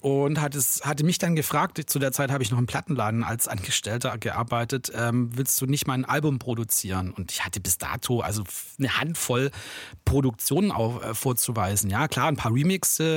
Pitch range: 120-145 Hz